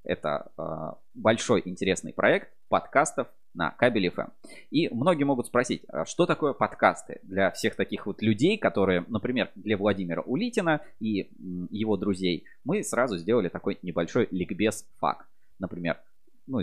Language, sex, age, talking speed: Russian, male, 20-39, 135 wpm